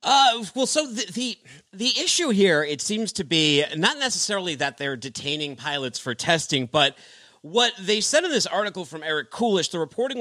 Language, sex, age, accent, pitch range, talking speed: English, male, 40-59, American, 140-205 Hz, 190 wpm